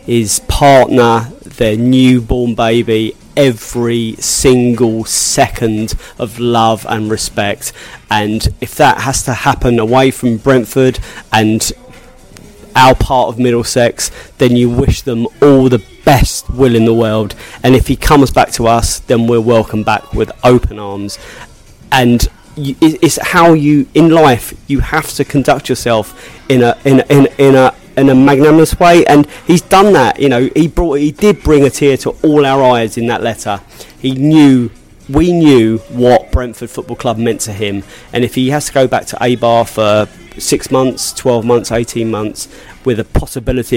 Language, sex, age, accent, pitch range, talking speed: English, male, 20-39, British, 115-135 Hz, 175 wpm